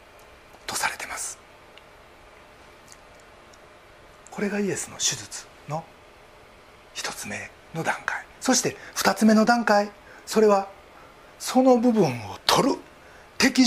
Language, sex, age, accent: Japanese, male, 40-59, native